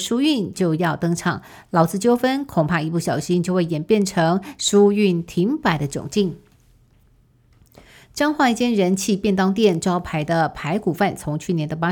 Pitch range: 170-205 Hz